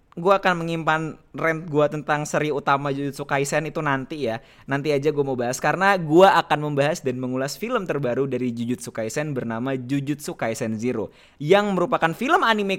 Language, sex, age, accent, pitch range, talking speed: Indonesian, male, 20-39, native, 135-205 Hz, 175 wpm